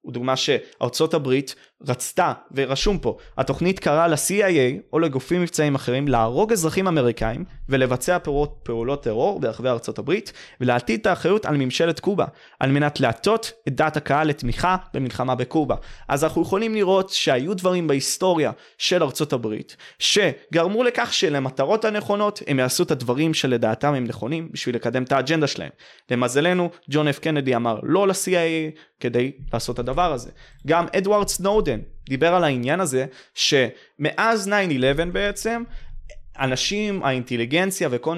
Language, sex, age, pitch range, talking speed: Hebrew, male, 20-39, 135-190 Hz, 130 wpm